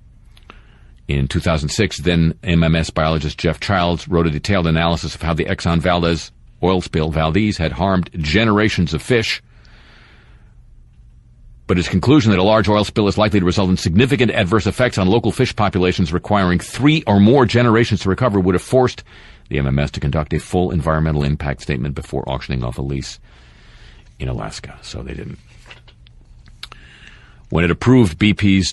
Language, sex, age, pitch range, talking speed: English, male, 50-69, 75-100 Hz, 160 wpm